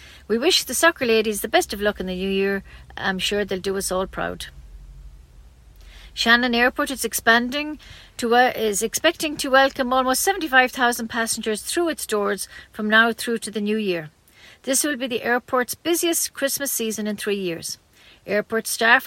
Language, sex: English, female